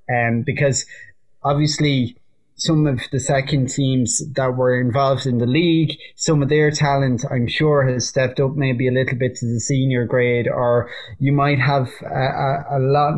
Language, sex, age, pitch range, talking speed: English, male, 20-39, 130-150 Hz, 180 wpm